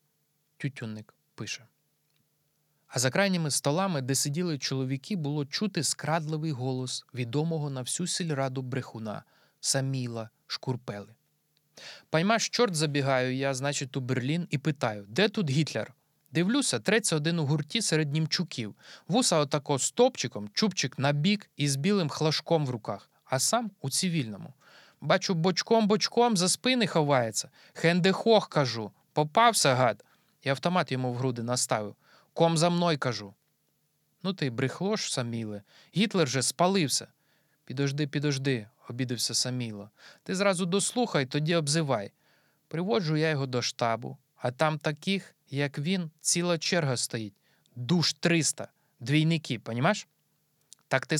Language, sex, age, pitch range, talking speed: Ukrainian, male, 20-39, 130-175 Hz, 130 wpm